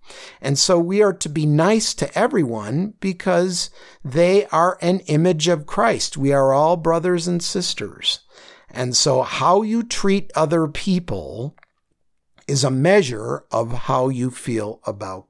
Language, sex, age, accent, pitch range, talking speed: English, male, 50-69, American, 120-175 Hz, 145 wpm